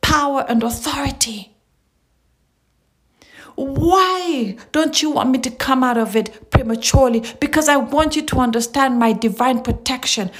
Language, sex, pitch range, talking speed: English, female, 210-265 Hz, 135 wpm